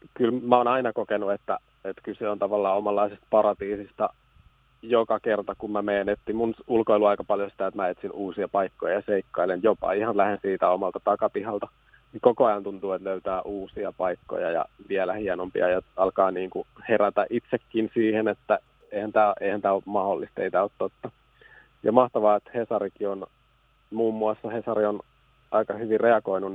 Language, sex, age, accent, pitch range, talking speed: Finnish, male, 30-49, native, 100-115 Hz, 165 wpm